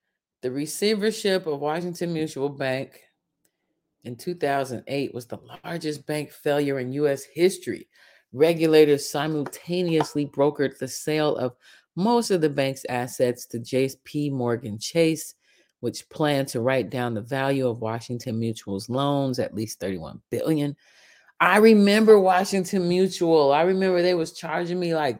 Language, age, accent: English, 30-49, American